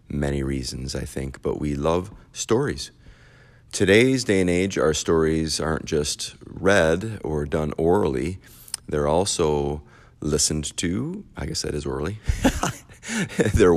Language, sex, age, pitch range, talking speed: English, male, 30-49, 75-100 Hz, 135 wpm